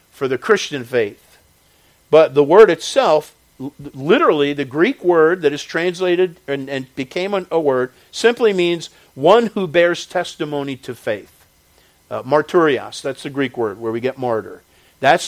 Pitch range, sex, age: 135-175 Hz, male, 50-69